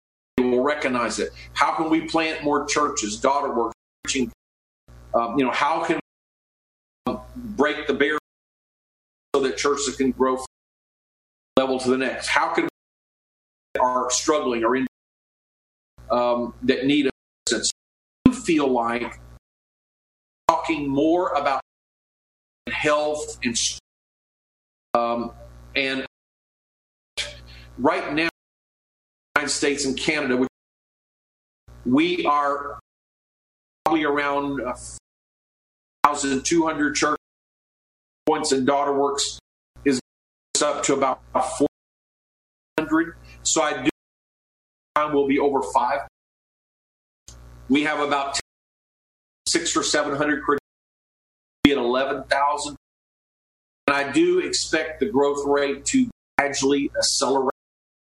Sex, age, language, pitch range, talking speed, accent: male, 50-69, English, 115-150 Hz, 105 wpm, American